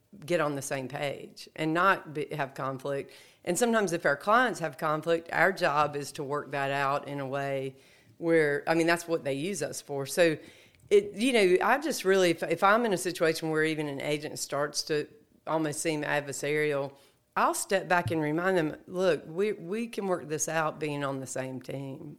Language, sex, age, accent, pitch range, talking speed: English, female, 40-59, American, 145-180 Hz, 205 wpm